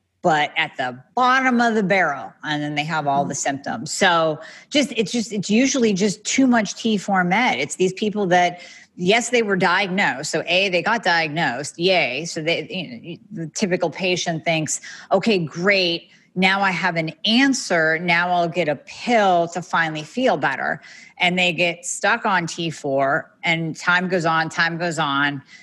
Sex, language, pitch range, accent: female, English, 155-190 Hz, American